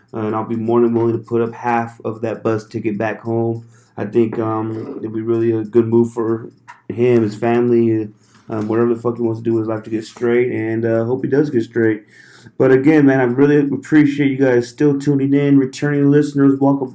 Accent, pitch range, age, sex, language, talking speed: American, 115-130 Hz, 30-49, male, English, 230 wpm